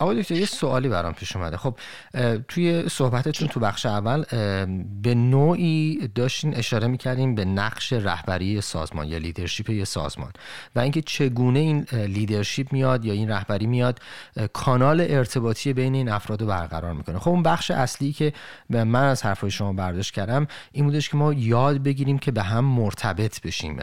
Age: 30-49